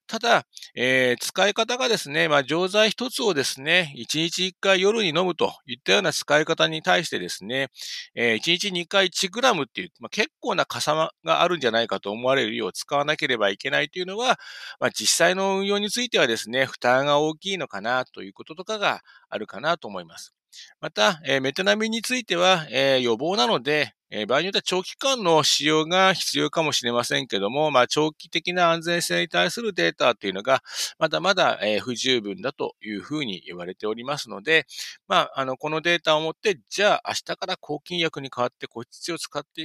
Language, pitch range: Japanese, 125-185 Hz